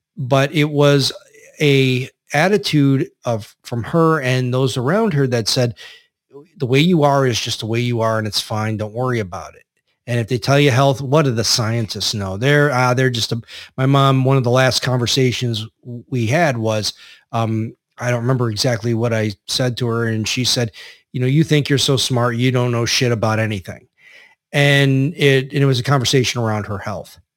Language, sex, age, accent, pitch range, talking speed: English, male, 40-59, American, 115-140 Hz, 200 wpm